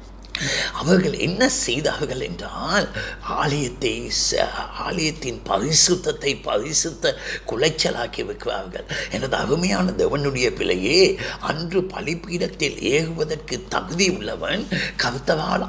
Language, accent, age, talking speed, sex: Tamil, native, 60-79, 75 wpm, male